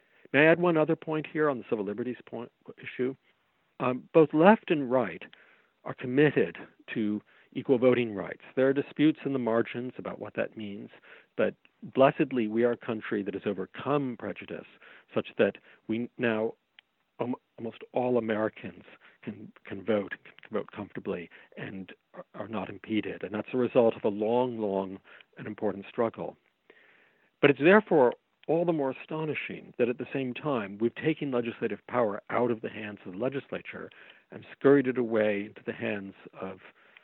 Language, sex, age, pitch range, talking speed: English, male, 50-69, 110-140 Hz, 165 wpm